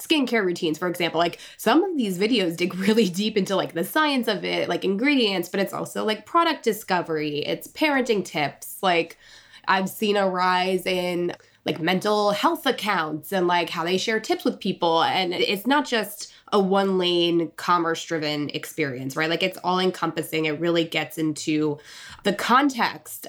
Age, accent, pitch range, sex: 20-39, American, 165-210 Hz, female